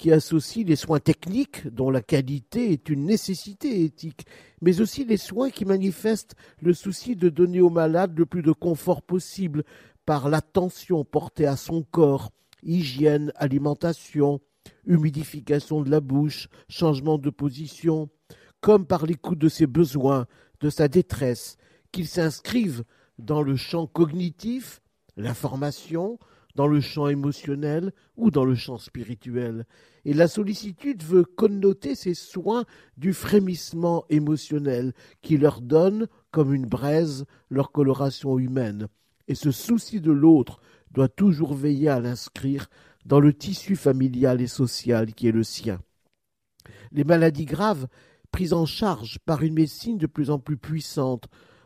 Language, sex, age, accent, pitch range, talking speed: French, male, 50-69, French, 140-180 Hz, 140 wpm